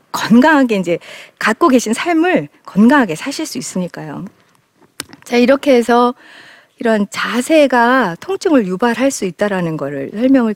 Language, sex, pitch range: Korean, female, 205-295 Hz